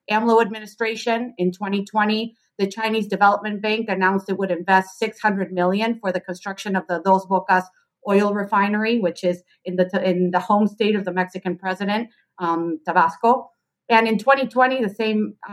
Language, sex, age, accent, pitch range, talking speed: English, female, 30-49, American, 185-215 Hz, 160 wpm